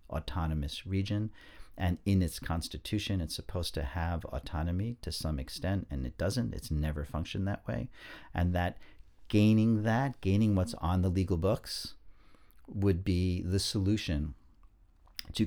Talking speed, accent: 145 wpm, American